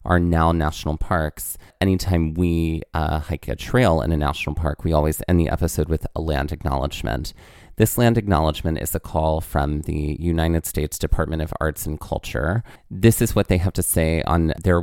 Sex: male